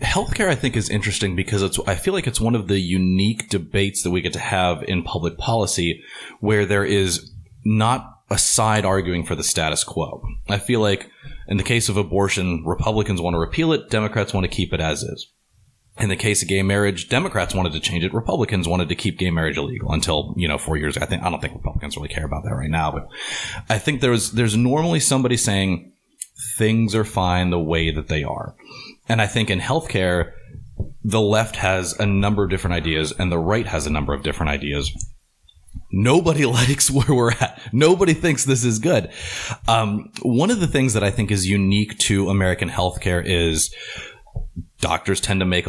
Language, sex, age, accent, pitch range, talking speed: English, male, 30-49, American, 85-110 Hz, 205 wpm